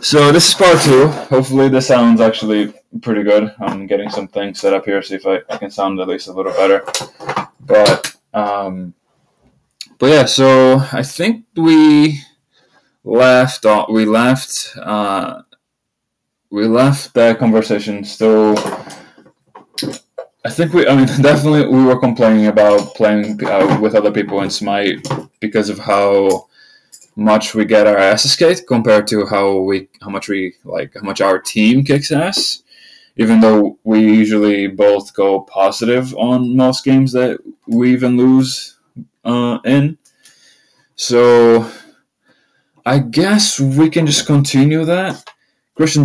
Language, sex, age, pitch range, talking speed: English, male, 20-39, 105-135 Hz, 145 wpm